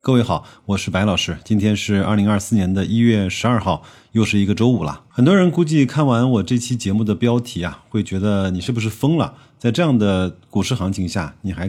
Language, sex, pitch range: Chinese, male, 95-125 Hz